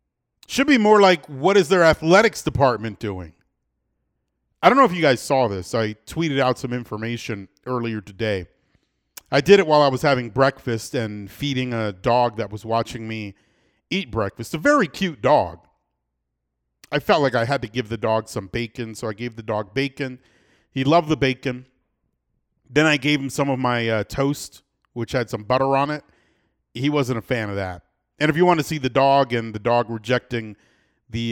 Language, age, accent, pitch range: English, 40-59, American, 110-145 Hz